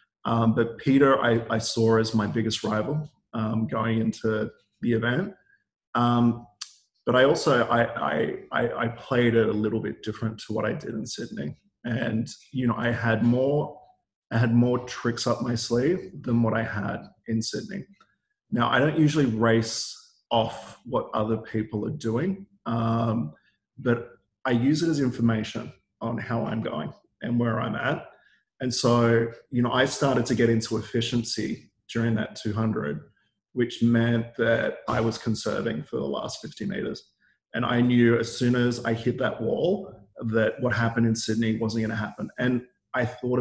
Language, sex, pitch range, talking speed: English, male, 110-120 Hz, 175 wpm